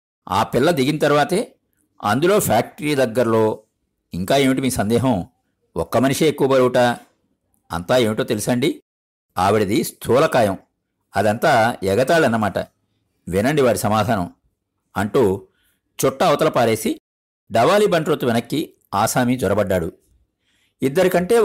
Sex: male